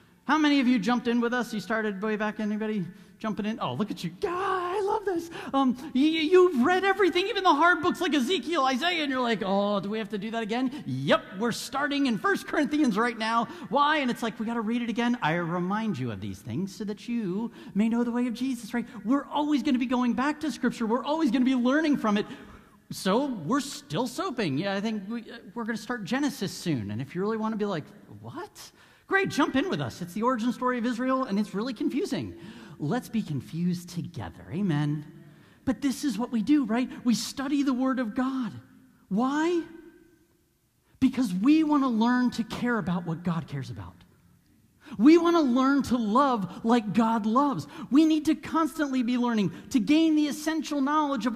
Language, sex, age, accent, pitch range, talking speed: English, male, 40-59, American, 215-290 Hz, 215 wpm